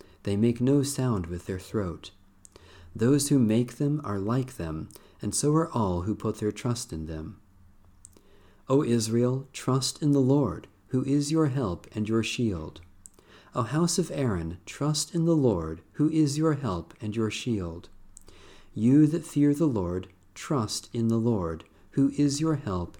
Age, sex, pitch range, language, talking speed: 50-69, male, 95-135 Hz, English, 170 wpm